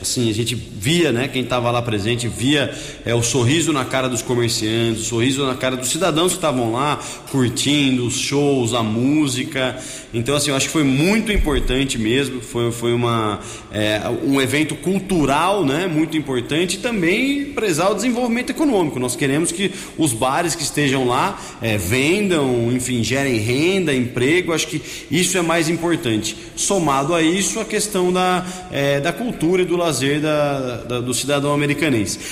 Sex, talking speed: male, 165 wpm